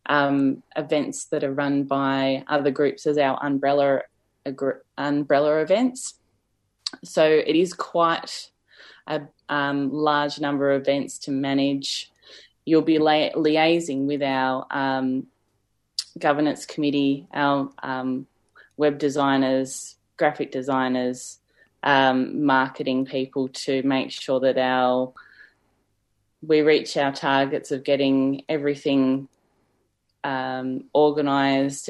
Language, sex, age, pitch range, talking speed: English, female, 10-29, 130-150 Hz, 110 wpm